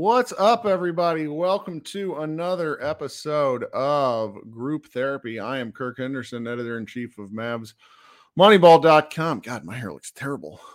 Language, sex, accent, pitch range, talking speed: English, male, American, 110-170 Hz, 125 wpm